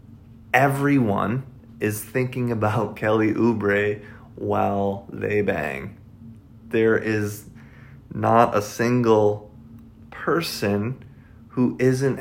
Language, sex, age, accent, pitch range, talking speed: English, male, 30-49, American, 110-130 Hz, 85 wpm